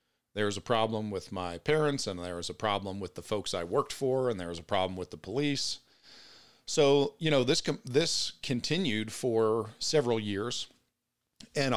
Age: 40-59